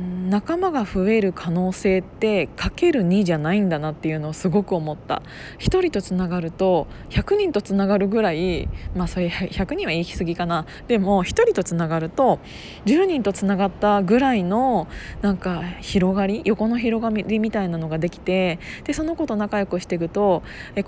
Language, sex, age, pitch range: Japanese, female, 20-39, 185-240 Hz